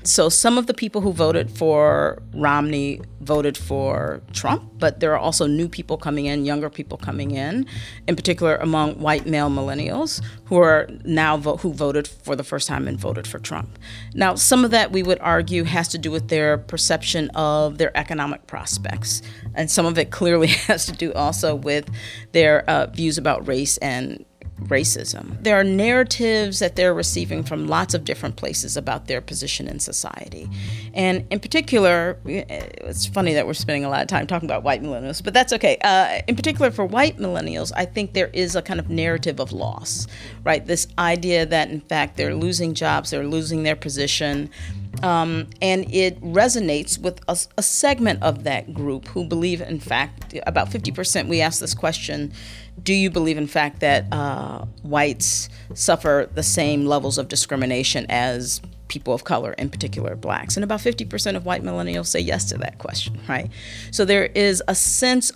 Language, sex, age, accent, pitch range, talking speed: English, female, 40-59, American, 110-175 Hz, 185 wpm